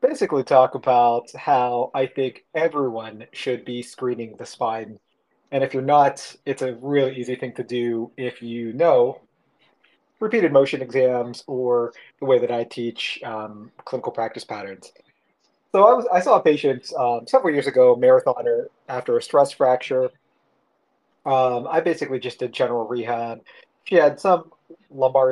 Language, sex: English, male